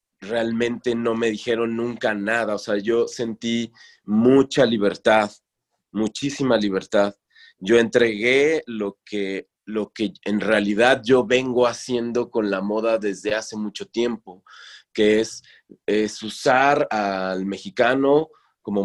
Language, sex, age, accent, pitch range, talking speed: English, male, 30-49, Mexican, 100-120 Hz, 120 wpm